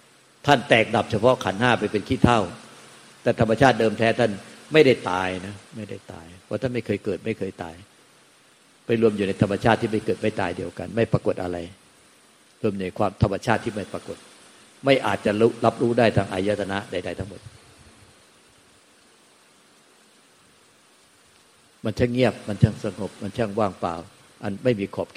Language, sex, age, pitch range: Thai, male, 60-79, 95-115 Hz